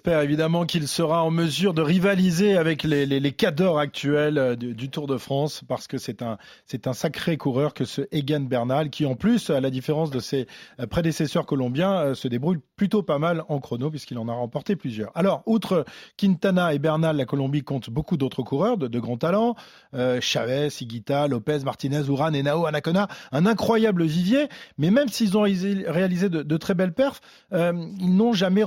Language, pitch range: French, 140-190 Hz